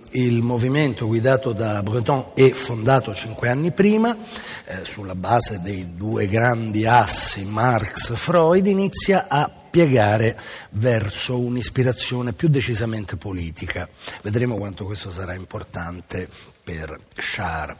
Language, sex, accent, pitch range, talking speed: Italian, male, native, 110-145 Hz, 110 wpm